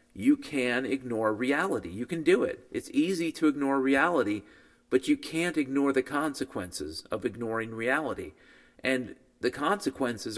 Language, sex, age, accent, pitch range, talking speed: English, male, 40-59, American, 130-180 Hz, 145 wpm